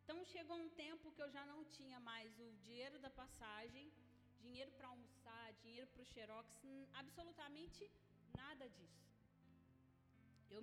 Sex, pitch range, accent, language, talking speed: female, 215-280 Hz, Brazilian, Gujarati, 140 wpm